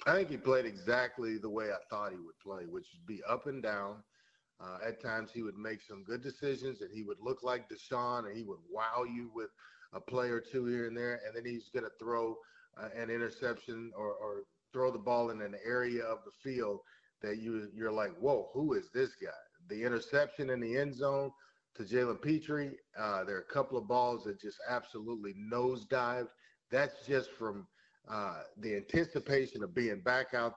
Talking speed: 210 wpm